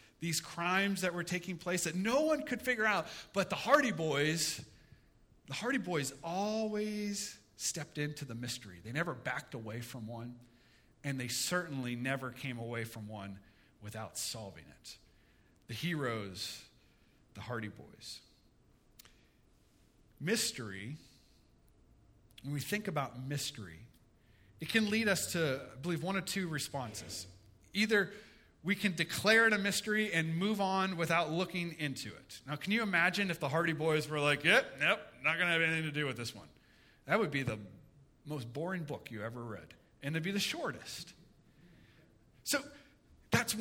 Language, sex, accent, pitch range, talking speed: English, male, American, 120-195 Hz, 160 wpm